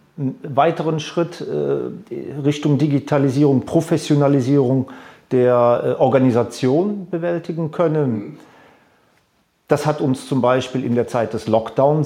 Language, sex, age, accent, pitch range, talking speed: German, male, 50-69, German, 130-150 Hz, 95 wpm